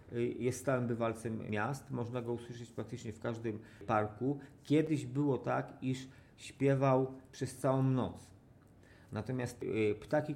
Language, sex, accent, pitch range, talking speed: Polish, male, native, 115-140 Hz, 120 wpm